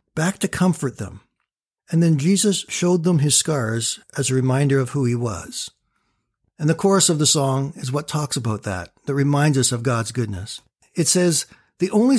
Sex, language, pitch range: male, English, 125-155 Hz